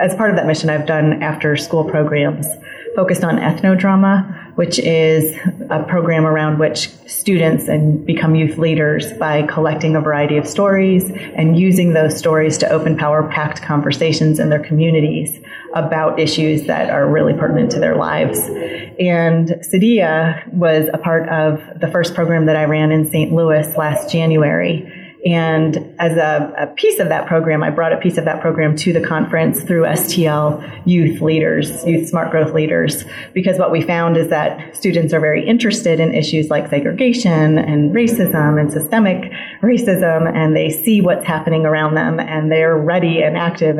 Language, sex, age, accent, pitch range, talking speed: English, female, 30-49, American, 155-170 Hz, 165 wpm